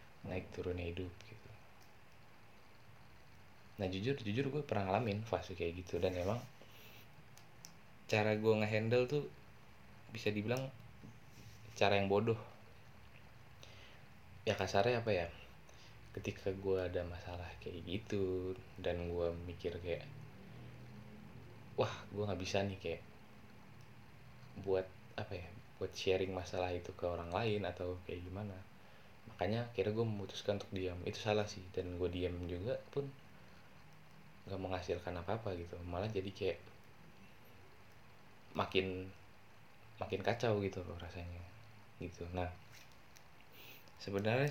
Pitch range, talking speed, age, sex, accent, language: 95-115 Hz, 115 wpm, 20-39, male, native, Indonesian